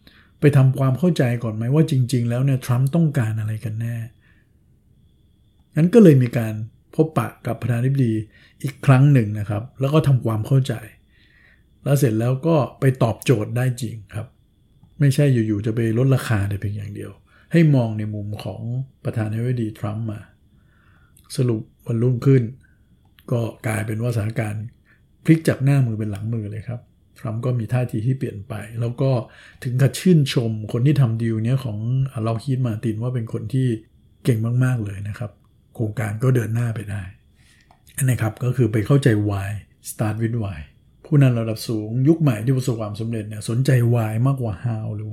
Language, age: Thai, 60-79